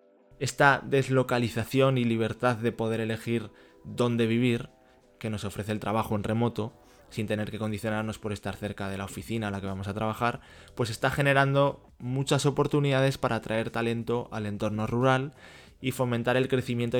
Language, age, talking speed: Spanish, 20-39, 165 wpm